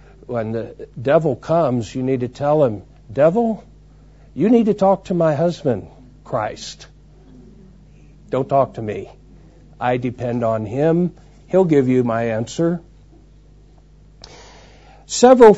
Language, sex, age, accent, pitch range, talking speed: English, male, 60-79, American, 125-165 Hz, 125 wpm